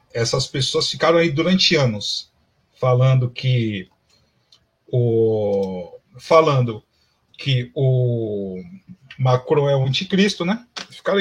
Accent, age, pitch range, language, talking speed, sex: Brazilian, 50-69, 125-170 Hz, Portuguese, 95 wpm, male